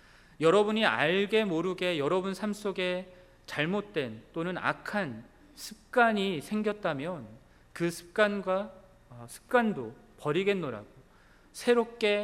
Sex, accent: male, native